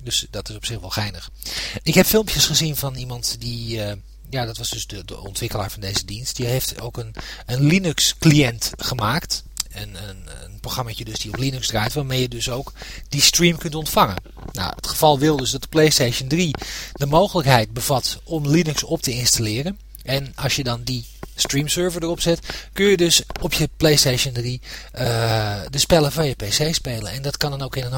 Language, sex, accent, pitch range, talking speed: English, male, Dutch, 115-150 Hz, 205 wpm